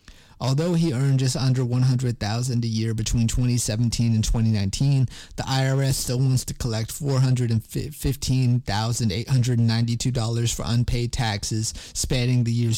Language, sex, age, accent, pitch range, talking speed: English, male, 30-49, American, 115-130 Hz, 115 wpm